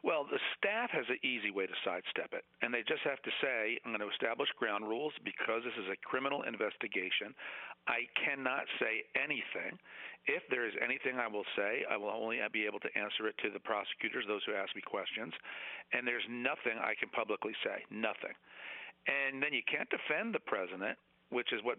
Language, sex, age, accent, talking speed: English, male, 50-69, American, 200 wpm